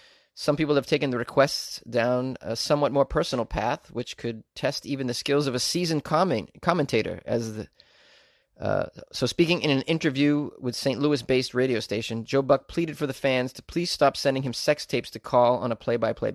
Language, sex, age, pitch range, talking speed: English, male, 30-49, 130-155 Hz, 195 wpm